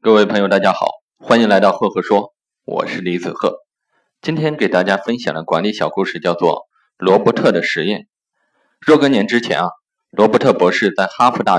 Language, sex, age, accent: Chinese, male, 20-39, native